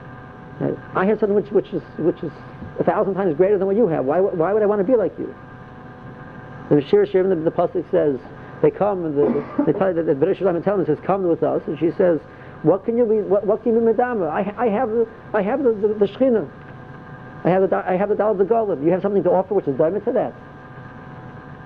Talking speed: 230 wpm